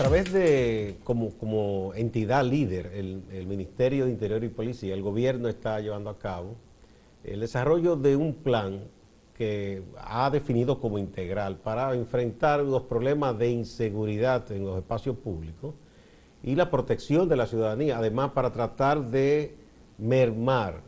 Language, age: Spanish, 50-69